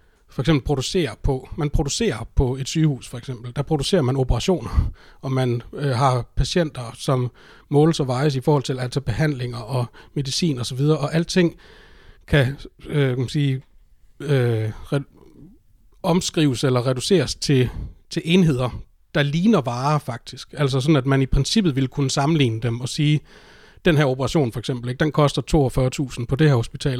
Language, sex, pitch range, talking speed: Danish, male, 125-155 Hz, 165 wpm